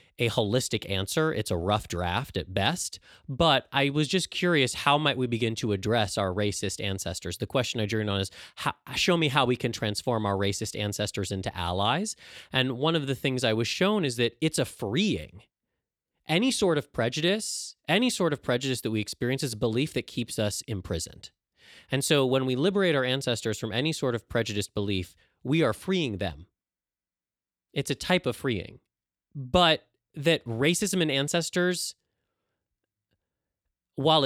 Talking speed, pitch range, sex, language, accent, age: 175 wpm, 105-150 Hz, male, English, American, 30-49